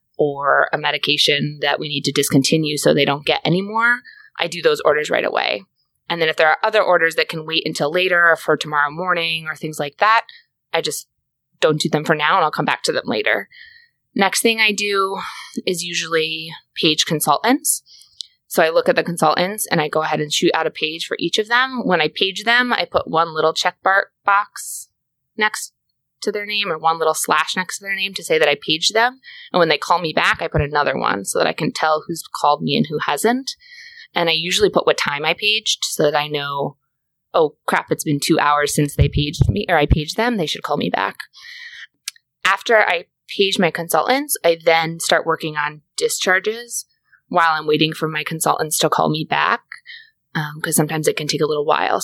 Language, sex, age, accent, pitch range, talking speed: English, female, 20-39, American, 155-215 Hz, 220 wpm